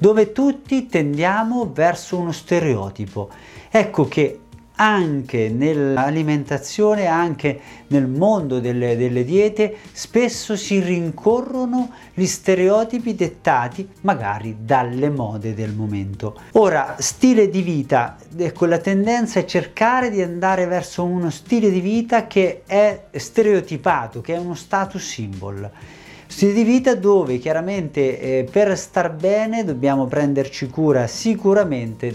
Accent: native